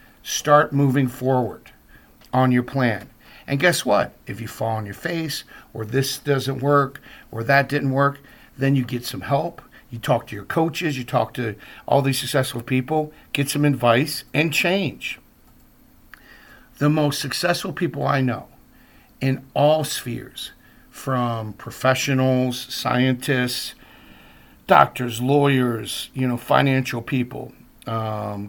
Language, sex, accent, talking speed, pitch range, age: English, male, American, 135 wpm, 125-150 Hz, 50-69